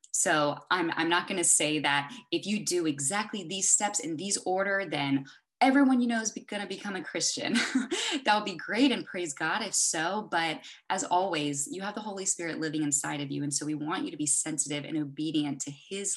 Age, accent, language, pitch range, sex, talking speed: 20-39, American, English, 150-210 Hz, female, 225 wpm